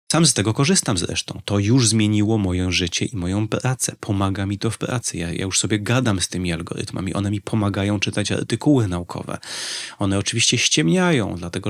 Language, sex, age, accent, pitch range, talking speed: Polish, male, 30-49, native, 100-115 Hz, 185 wpm